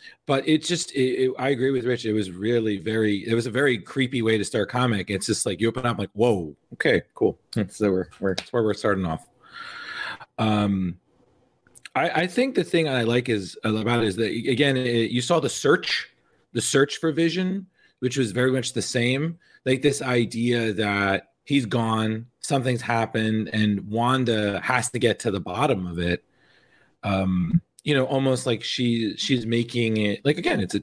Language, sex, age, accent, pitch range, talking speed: English, male, 30-49, American, 105-135 Hz, 195 wpm